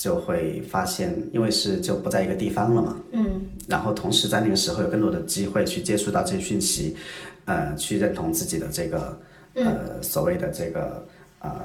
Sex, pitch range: male, 175-180 Hz